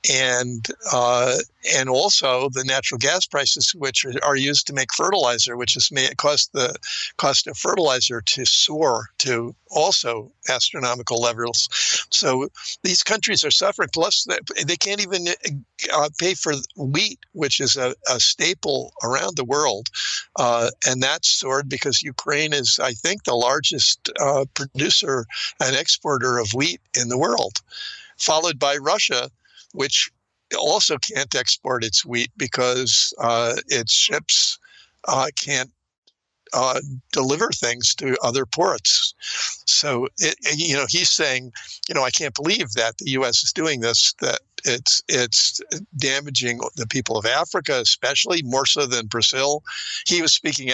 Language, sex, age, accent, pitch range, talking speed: English, male, 60-79, American, 120-145 Hz, 145 wpm